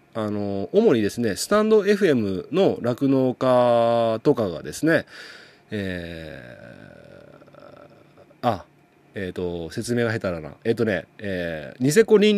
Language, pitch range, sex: Japanese, 105-150 Hz, male